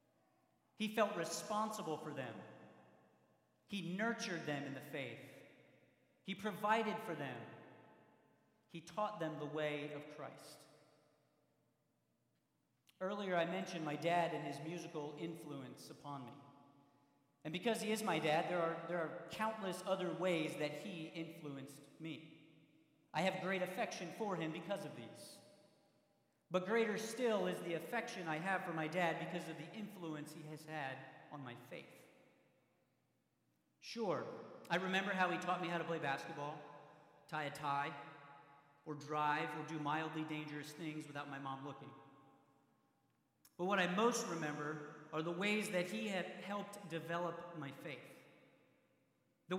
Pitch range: 150-185 Hz